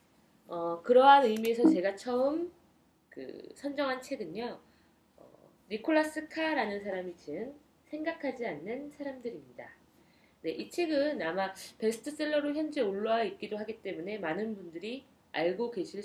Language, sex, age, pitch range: Korean, female, 20-39, 185-275 Hz